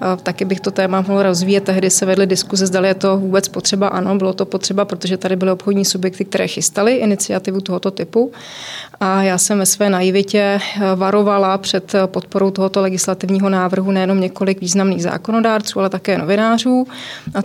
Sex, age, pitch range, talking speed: female, 30-49, 185-200 Hz, 170 wpm